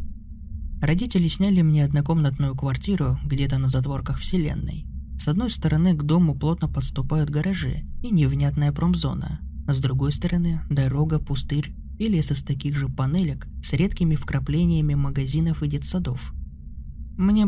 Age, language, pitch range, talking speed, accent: 20-39, Russian, 130-165 Hz, 135 wpm, native